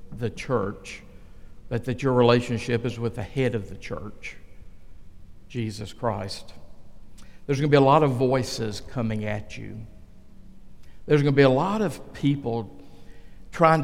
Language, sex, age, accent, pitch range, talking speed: English, male, 60-79, American, 110-135 Hz, 145 wpm